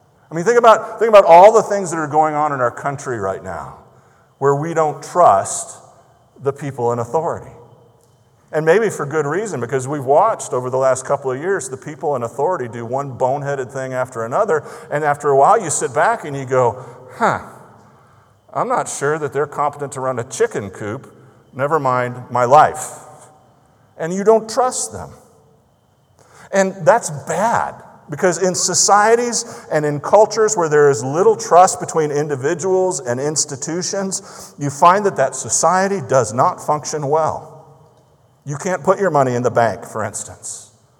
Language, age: English, 50-69